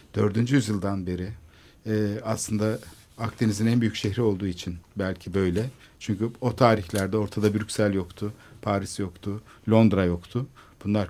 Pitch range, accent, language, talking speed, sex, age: 105-130 Hz, native, Turkish, 125 wpm, male, 50-69